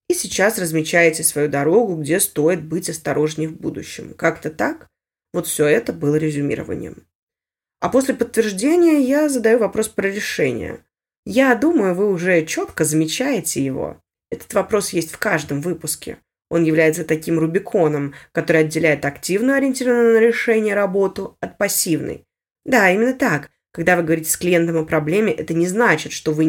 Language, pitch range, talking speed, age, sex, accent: Russian, 155-210 Hz, 150 wpm, 20-39, female, native